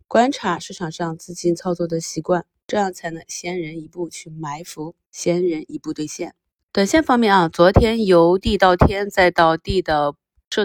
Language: Chinese